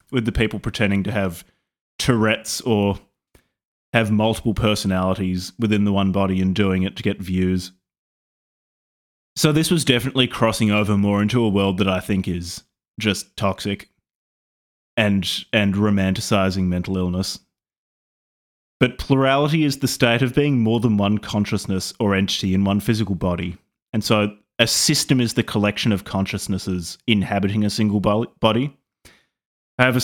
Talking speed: 145 wpm